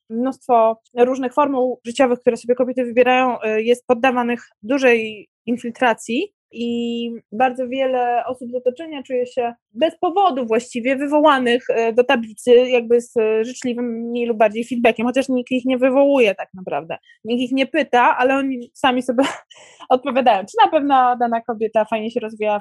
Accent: native